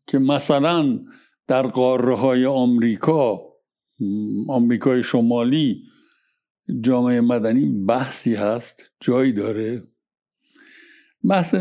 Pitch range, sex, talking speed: 125-180 Hz, male, 80 wpm